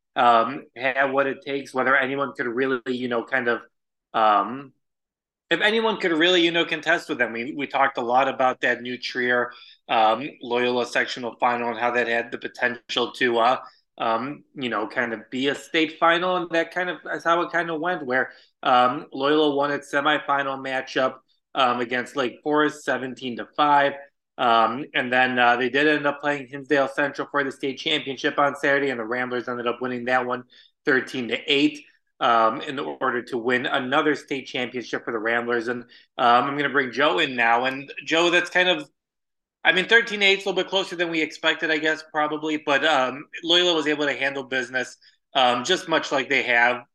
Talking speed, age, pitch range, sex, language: 205 wpm, 20-39, 125-155 Hz, male, English